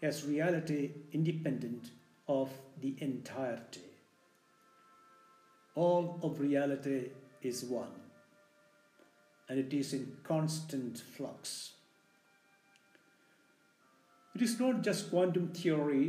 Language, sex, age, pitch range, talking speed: English, male, 60-79, 140-175 Hz, 85 wpm